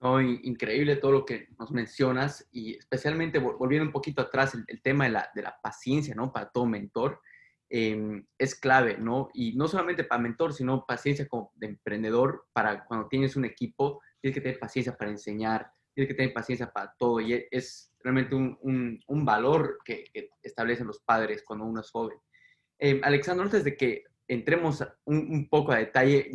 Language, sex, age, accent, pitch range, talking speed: Spanish, male, 20-39, Mexican, 120-140 Hz, 190 wpm